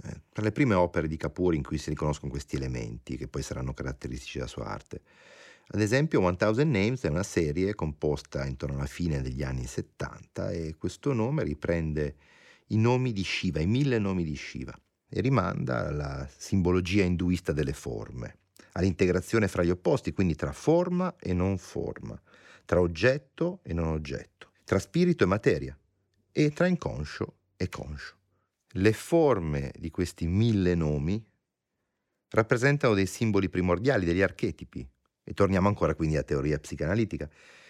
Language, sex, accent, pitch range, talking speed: Italian, male, native, 75-110 Hz, 155 wpm